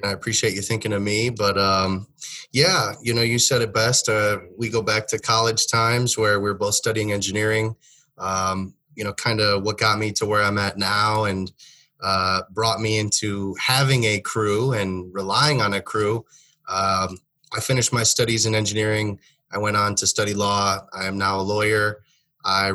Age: 20-39